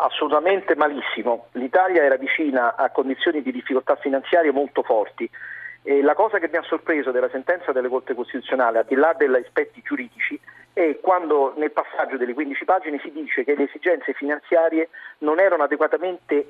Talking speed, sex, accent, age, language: 165 wpm, male, native, 40-59, Italian